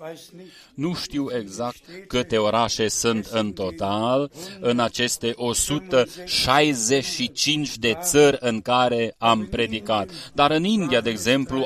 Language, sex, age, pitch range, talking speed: Romanian, male, 30-49, 115-150 Hz, 115 wpm